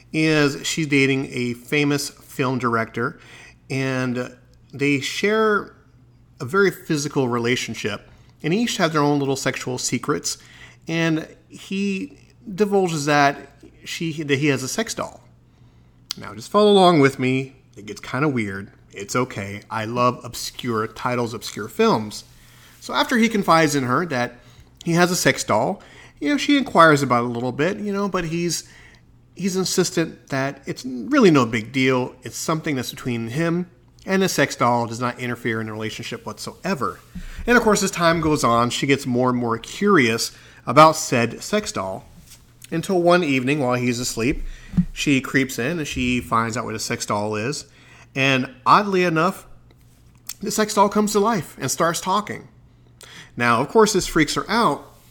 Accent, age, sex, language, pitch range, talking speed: American, 30-49, male, English, 120-170 Hz, 170 wpm